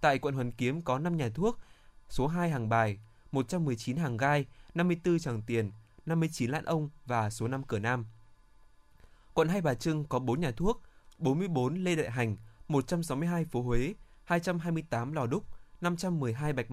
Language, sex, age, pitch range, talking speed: Vietnamese, male, 20-39, 115-160 Hz, 165 wpm